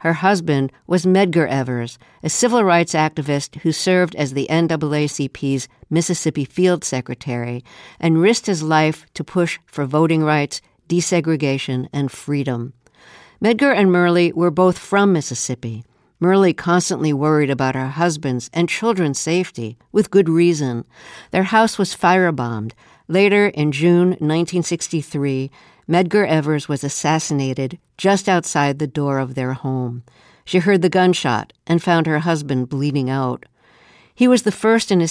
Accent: American